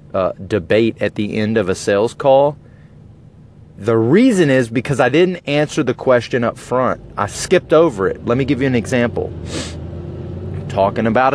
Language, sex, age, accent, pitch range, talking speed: English, male, 30-49, American, 110-145 Hz, 170 wpm